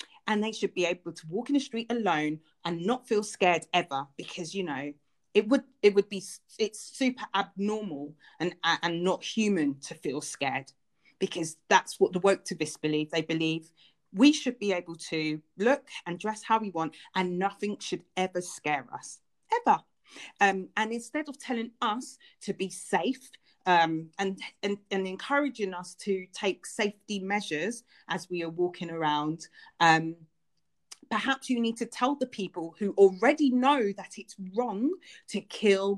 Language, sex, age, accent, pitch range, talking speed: English, female, 30-49, British, 175-235 Hz, 170 wpm